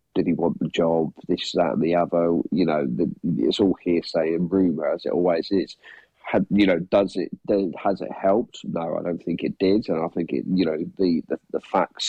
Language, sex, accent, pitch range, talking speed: English, male, British, 85-95 Hz, 235 wpm